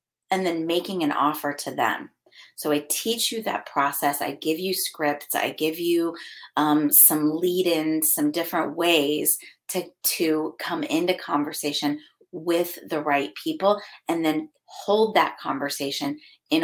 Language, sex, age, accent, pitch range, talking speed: English, female, 30-49, American, 150-180 Hz, 150 wpm